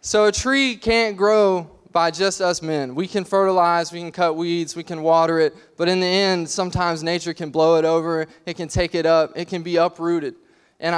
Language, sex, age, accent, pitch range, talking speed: English, male, 20-39, American, 165-190 Hz, 220 wpm